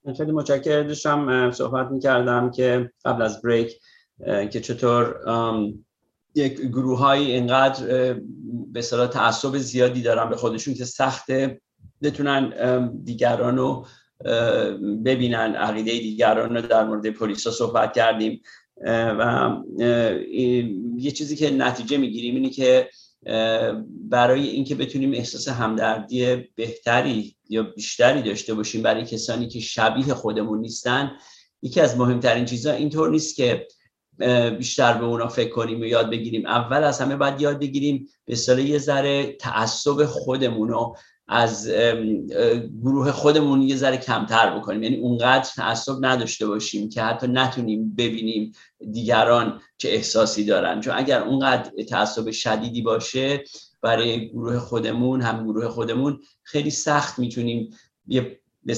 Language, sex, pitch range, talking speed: Persian, male, 115-135 Hz, 125 wpm